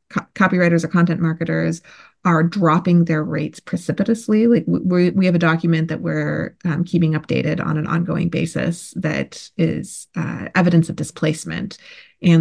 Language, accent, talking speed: English, American, 150 wpm